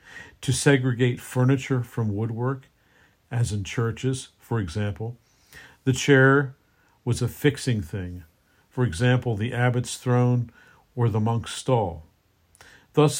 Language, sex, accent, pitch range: English, male, American, 105-130 Hz